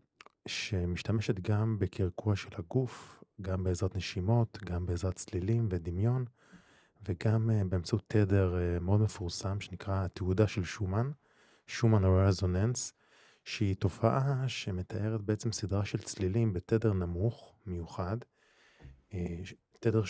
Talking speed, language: 105 wpm, Hebrew